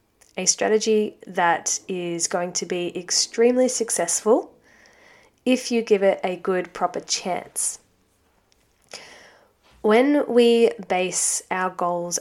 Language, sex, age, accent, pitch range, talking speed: English, female, 10-29, Australian, 175-220 Hz, 110 wpm